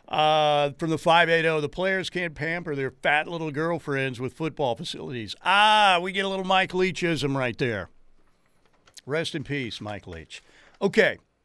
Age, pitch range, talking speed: 50-69, 135-185 Hz, 155 wpm